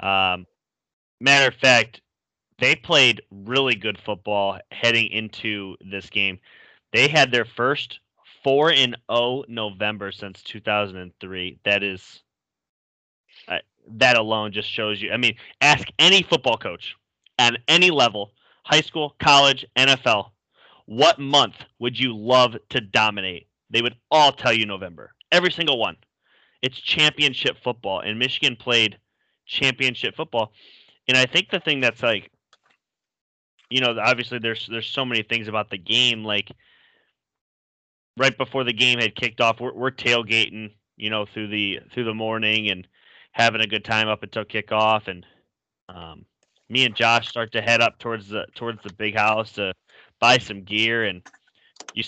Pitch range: 105-125 Hz